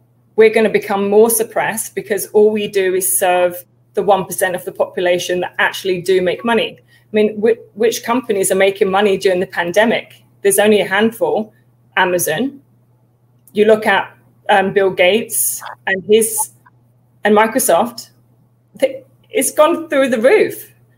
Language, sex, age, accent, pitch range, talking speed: English, female, 20-39, British, 180-215 Hz, 145 wpm